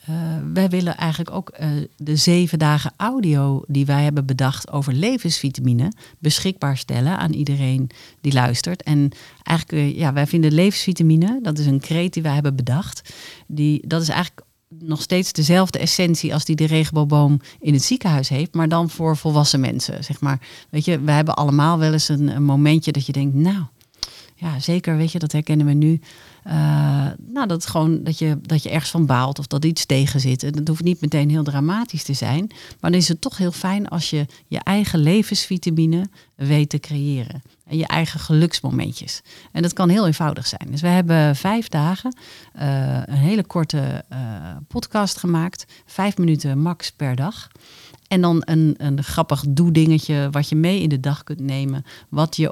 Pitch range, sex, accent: 140-170 Hz, female, Dutch